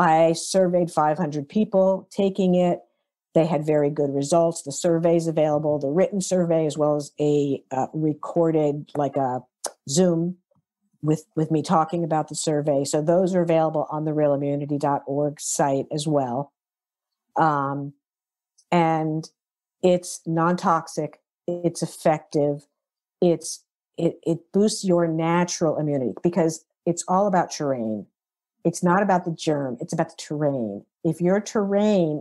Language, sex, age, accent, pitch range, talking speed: English, female, 50-69, American, 150-180 Hz, 135 wpm